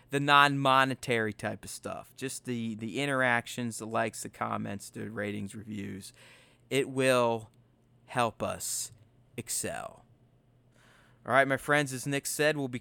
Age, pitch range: 30-49, 115-140 Hz